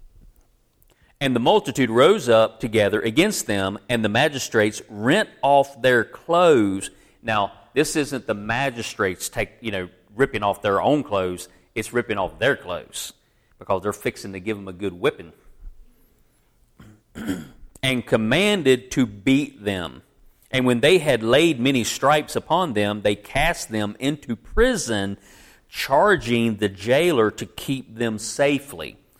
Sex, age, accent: male, 40-59, American